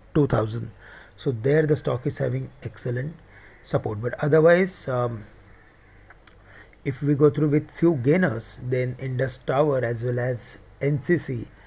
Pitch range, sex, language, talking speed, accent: 115-140 Hz, male, English, 135 wpm, Indian